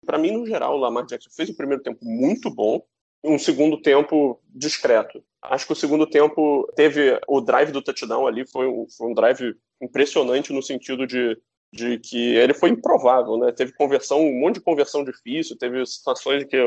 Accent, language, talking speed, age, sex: Brazilian, Portuguese, 200 wpm, 20-39, male